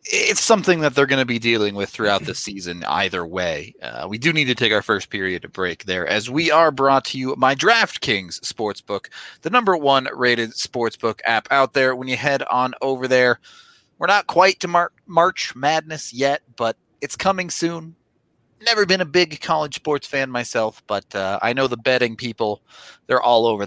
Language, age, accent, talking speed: English, 30-49, American, 200 wpm